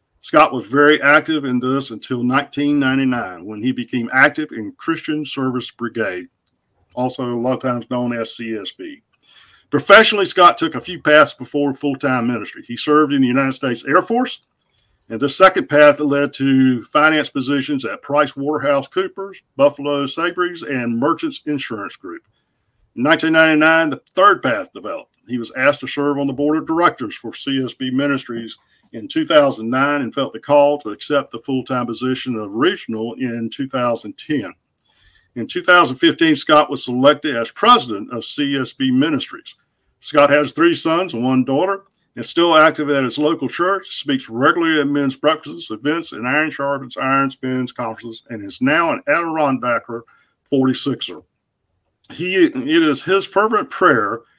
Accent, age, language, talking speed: American, 50-69, English, 160 wpm